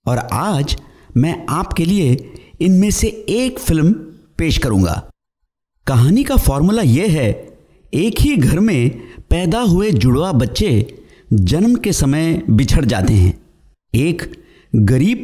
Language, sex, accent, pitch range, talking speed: Hindi, male, native, 115-170 Hz, 125 wpm